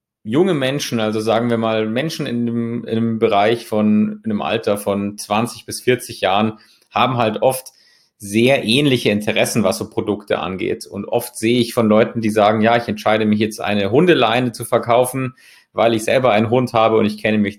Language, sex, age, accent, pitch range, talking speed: German, male, 30-49, German, 105-120 Hz, 200 wpm